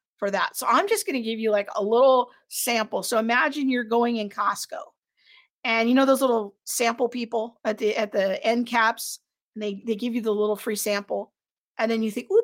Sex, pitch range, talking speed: female, 210-270 Hz, 215 wpm